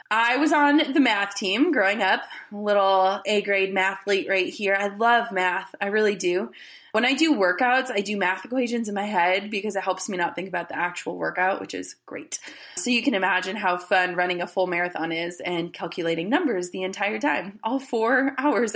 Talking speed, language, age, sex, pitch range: 200 wpm, English, 20-39, female, 190-245 Hz